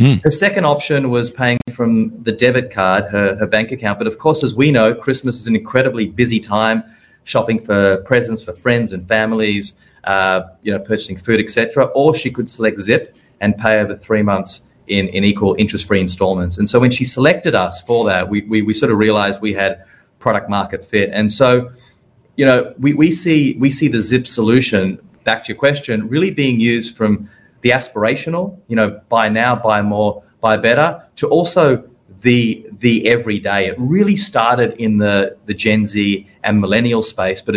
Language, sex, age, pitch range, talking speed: English, male, 30-49, 105-125 Hz, 190 wpm